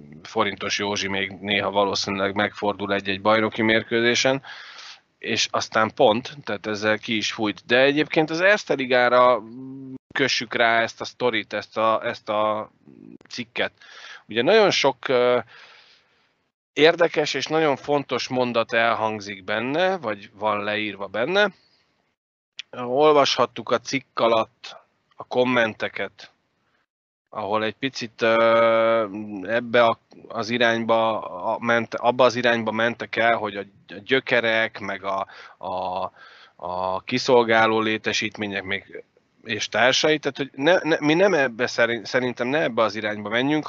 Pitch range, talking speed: 105-125 Hz, 120 wpm